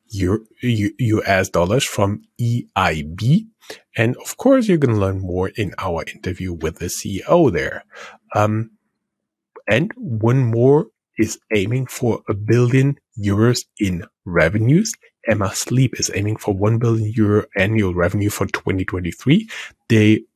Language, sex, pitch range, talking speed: English, male, 95-115 Hz, 135 wpm